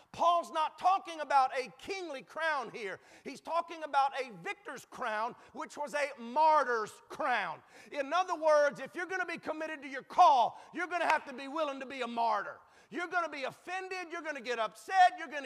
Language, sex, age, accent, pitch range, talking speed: English, male, 40-59, American, 300-375 Hz, 210 wpm